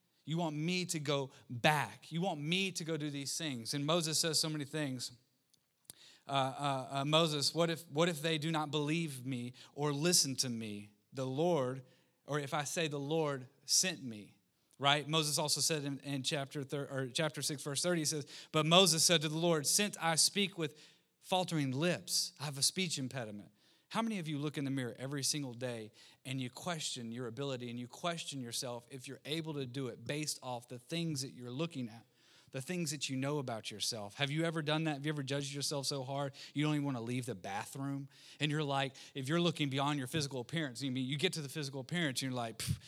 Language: English